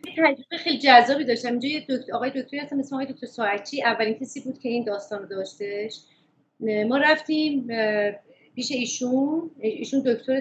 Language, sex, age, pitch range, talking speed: Persian, female, 30-49, 215-270 Hz, 145 wpm